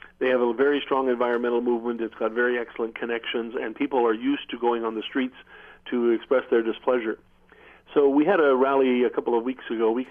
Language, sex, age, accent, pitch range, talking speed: English, male, 50-69, American, 115-135 Hz, 220 wpm